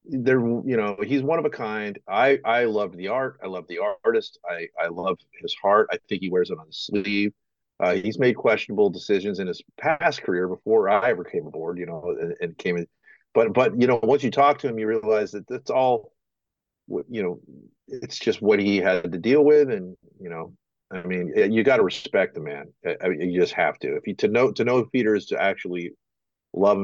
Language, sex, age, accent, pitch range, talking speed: English, male, 40-59, American, 105-165 Hz, 225 wpm